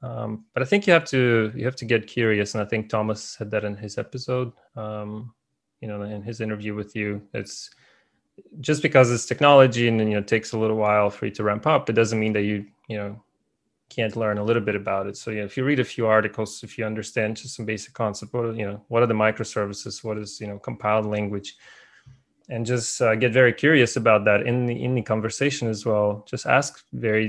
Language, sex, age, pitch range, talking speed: English, male, 20-39, 105-120 Hz, 235 wpm